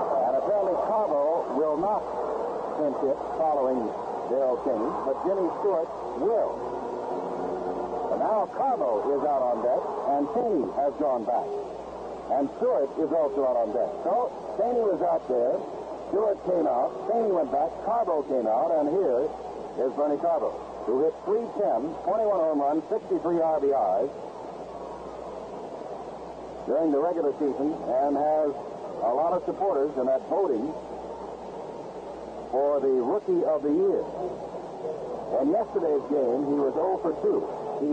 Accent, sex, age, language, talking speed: American, male, 60-79, English, 135 wpm